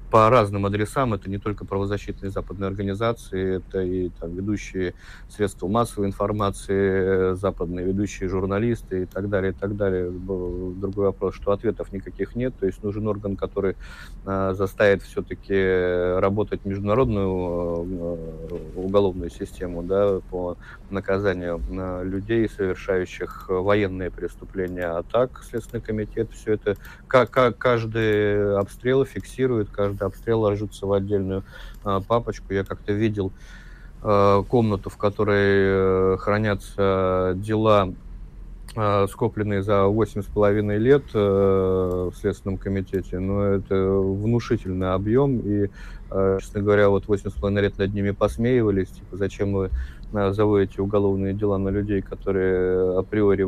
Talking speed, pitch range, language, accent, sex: 110 wpm, 95-105 Hz, Russian, native, male